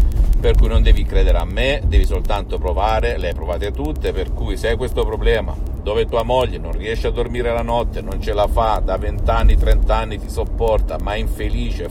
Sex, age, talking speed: male, 50-69, 205 wpm